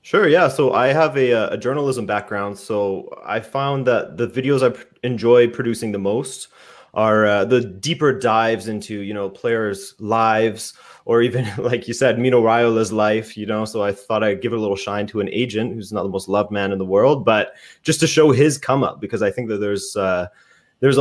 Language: English